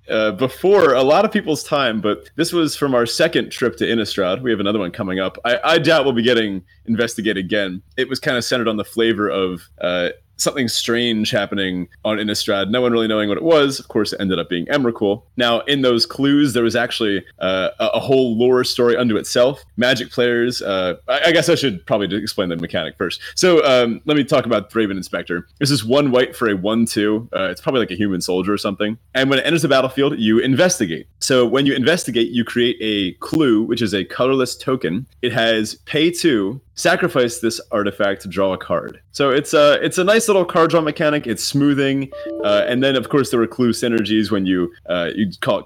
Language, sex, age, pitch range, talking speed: English, male, 30-49, 105-135 Hz, 225 wpm